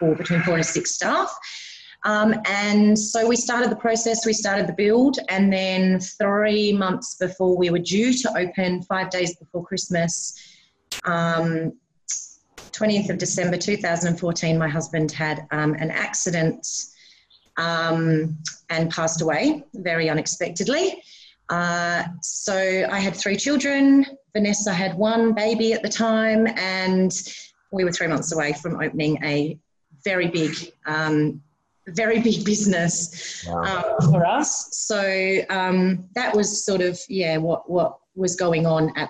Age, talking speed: 30-49, 140 wpm